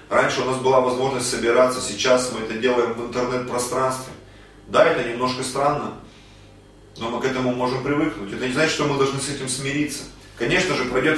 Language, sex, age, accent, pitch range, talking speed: Russian, male, 30-49, native, 125-150 Hz, 180 wpm